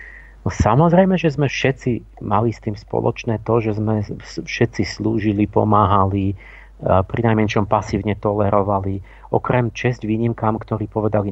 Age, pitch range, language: 40-59, 105-125 Hz, Slovak